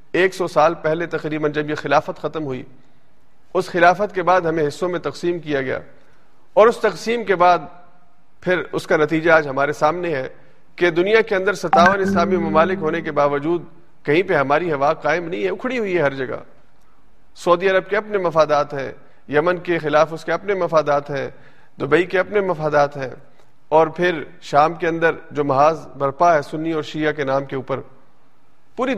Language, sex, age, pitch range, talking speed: Urdu, male, 40-59, 150-185 Hz, 190 wpm